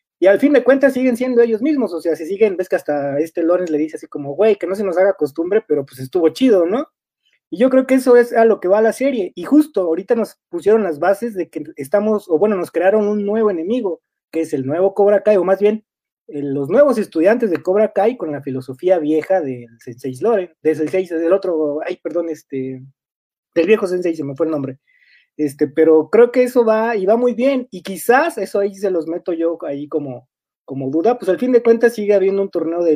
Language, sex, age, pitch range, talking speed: Spanish, male, 30-49, 150-215 Hz, 245 wpm